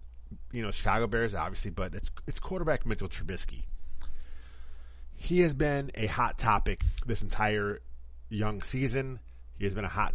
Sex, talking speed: male, 155 wpm